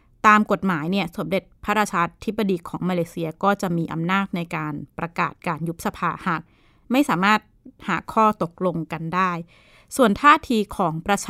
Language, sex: Thai, female